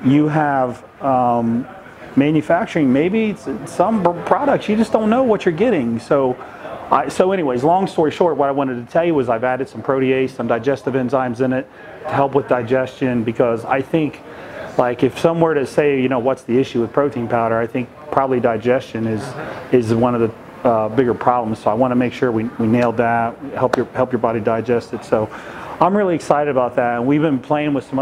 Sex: male